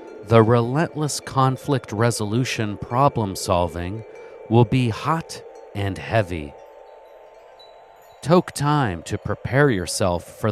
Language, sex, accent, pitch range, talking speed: English, male, American, 100-150 Hz, 90 wpm